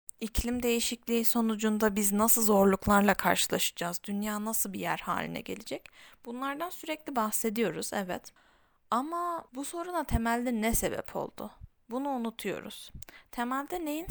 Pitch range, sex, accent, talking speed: 215-275 Hz, female, native, 120 wpm